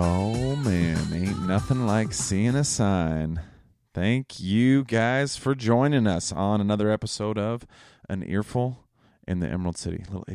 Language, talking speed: English, 150 wpm